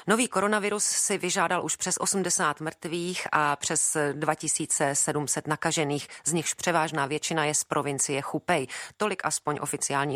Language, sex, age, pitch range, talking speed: Czech, female, 40-59, 140-175 Hz, 135 wpm